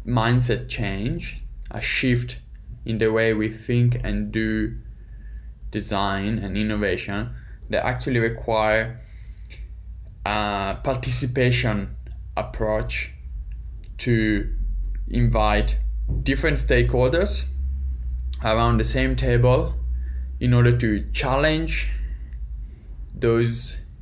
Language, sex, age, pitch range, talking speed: English, male, 20-39, 80-120 Hz, 80 wpm